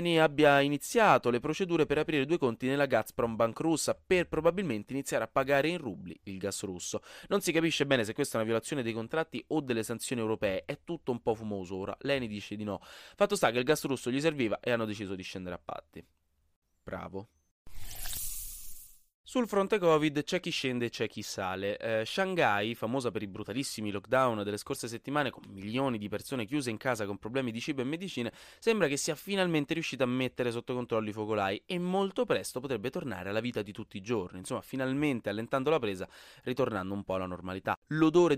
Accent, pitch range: native, 100-145 Hz